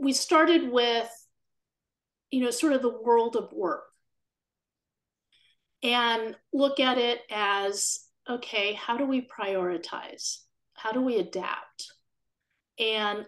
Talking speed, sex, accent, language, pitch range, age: 120 wpm, female, American, English, 195-250 Hz, 30-49